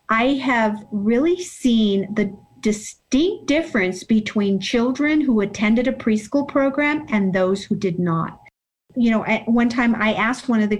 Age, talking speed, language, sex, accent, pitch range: 50-69, 160 wpm, English, female, American, 210-260 Hz